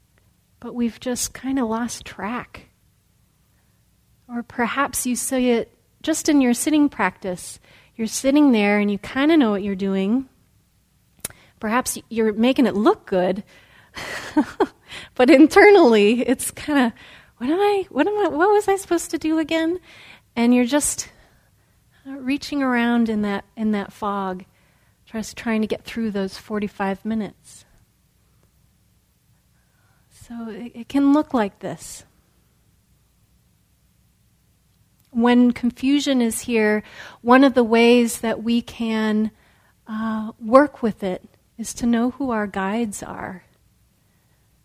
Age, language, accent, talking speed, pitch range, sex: 30-49, English, American, 130 wpm, 210-260 Hz, female